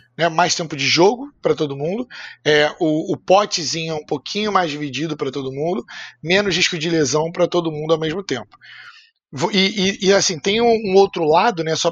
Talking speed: 200 wpm